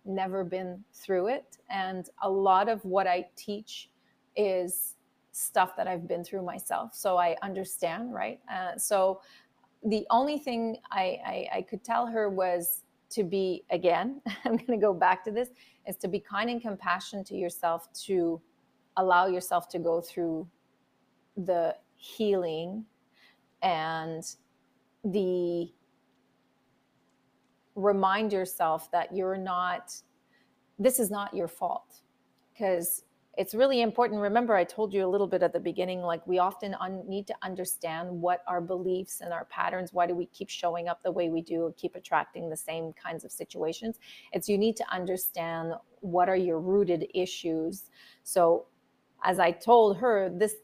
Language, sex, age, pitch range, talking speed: English, female, 30-49, 175-210 Hz, 155 wpm